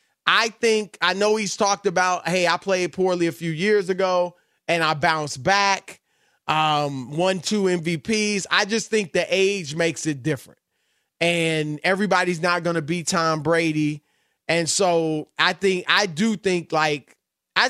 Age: 20-39